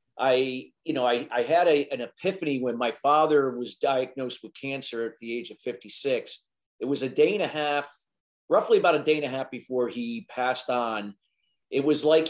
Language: English